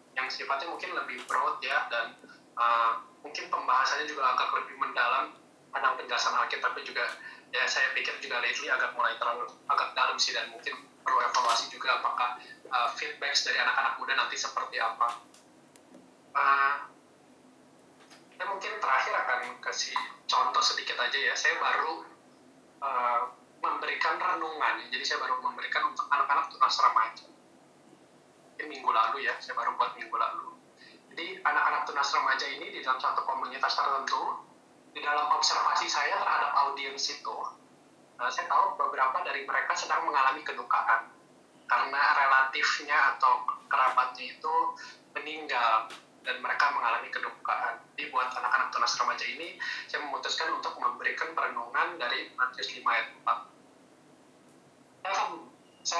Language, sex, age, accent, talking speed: Indonesian, male, 20-39, native, 140 wpm